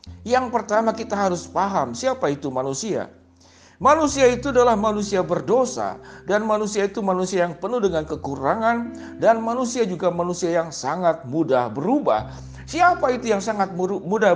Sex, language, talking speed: male, Indonesian, 140 wpm